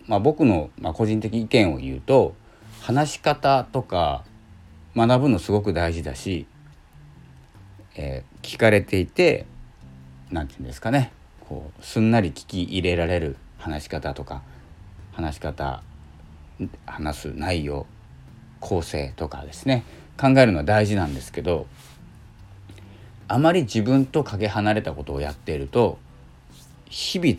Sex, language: male, Japanese